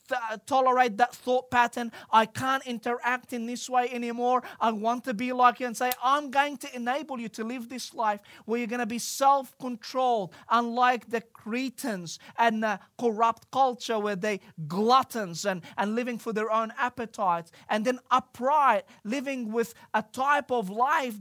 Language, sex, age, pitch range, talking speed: English, male, 30-49, 200-245 Hz, 175 wpm